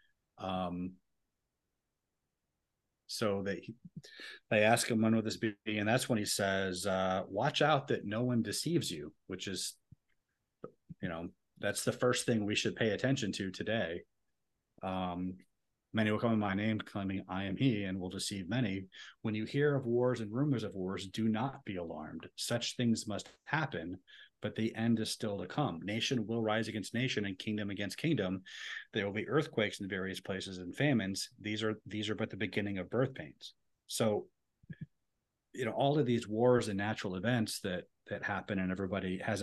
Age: 30-49